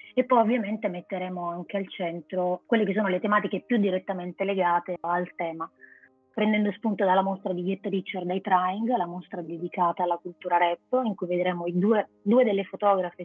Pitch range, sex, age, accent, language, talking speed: 180-210 Hz, female, 20-39, native, Italian, 180 wpm